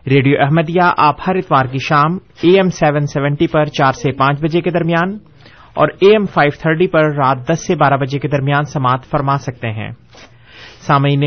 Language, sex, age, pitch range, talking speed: Urdu, male, 30-49, 135-170 Hz, 180 wpm